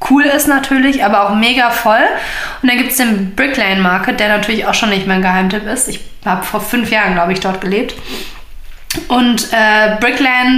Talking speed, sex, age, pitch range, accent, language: 195 wpm, female, 20-39, 210-255 Hz, German, German